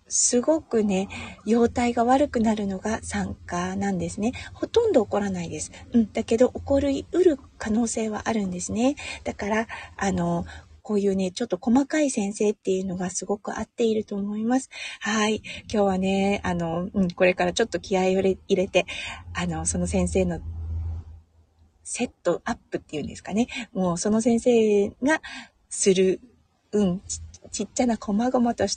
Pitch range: 185-260 Hz